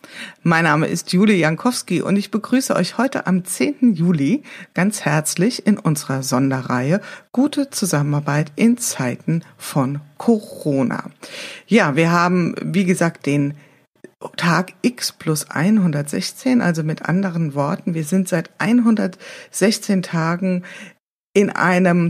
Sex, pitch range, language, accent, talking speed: female, 155-205 Hz, German, German, 120 wpm